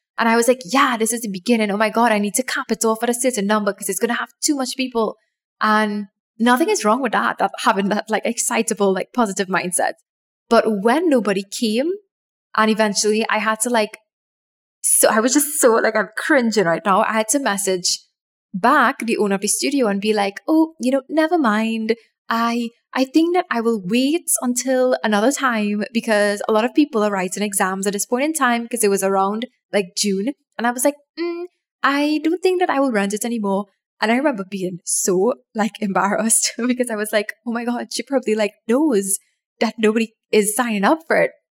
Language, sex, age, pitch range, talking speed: English, female, 10-29, 205-255 Hz, 215 wpm